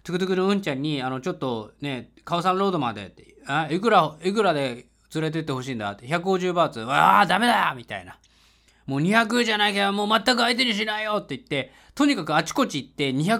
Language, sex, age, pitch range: Japanese, male, 20-39, 145-235 Hz